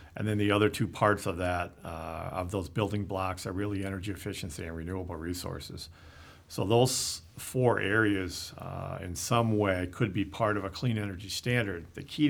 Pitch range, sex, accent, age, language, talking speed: 85-105 Hz, male, American, 50-69, English, 185 wpm